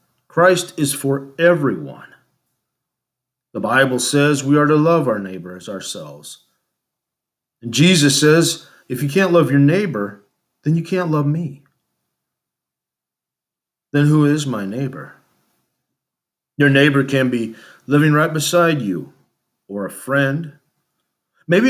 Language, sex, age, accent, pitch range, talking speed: English, male, 40-59, American, 125-155 Hz, 125 wpm